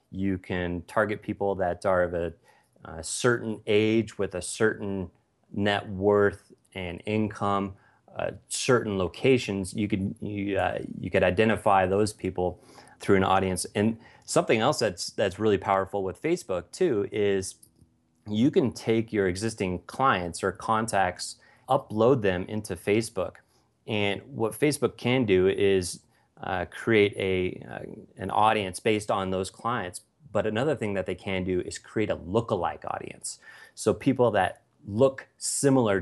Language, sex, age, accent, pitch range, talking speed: English, male, 30-49, American, 95-110 Hz, 145 wpm